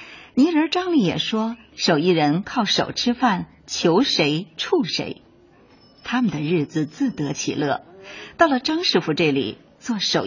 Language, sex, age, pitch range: Chinese, female, 50-69, 170-270 Hz